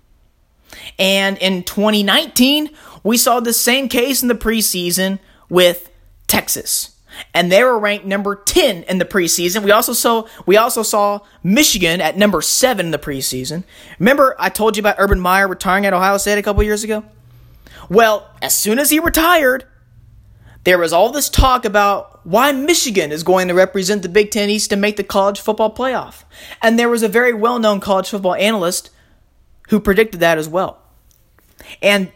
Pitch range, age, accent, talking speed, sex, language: 180-235 Hz, 20-39, American, 175 wpm, male, English